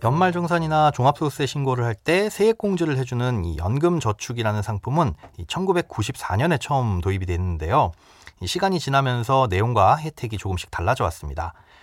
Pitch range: 100-160 Hz